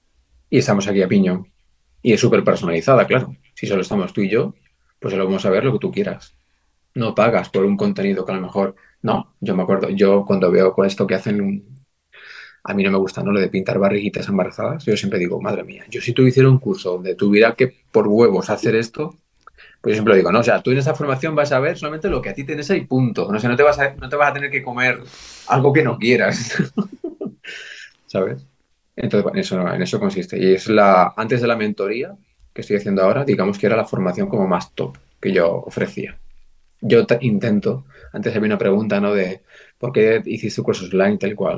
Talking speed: 230 wpm